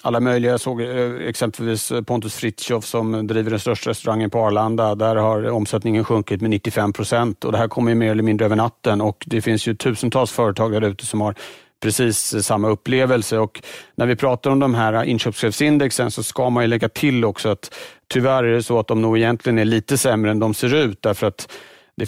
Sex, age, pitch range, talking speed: male, 40-59, 110-130 Hz, 205 wpm